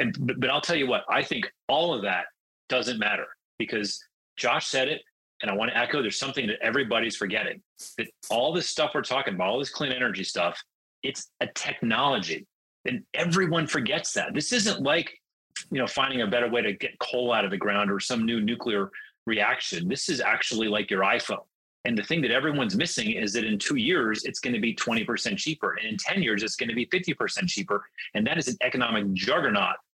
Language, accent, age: English, American, 30-49